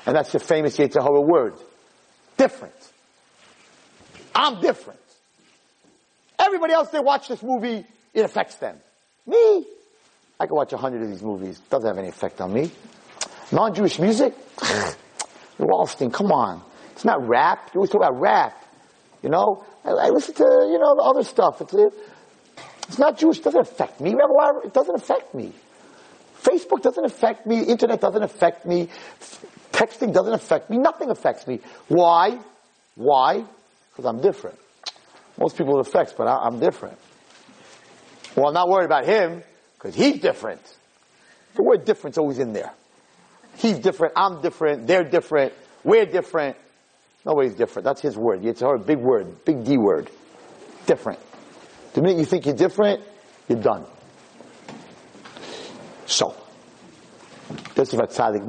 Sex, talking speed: male, 150 wpm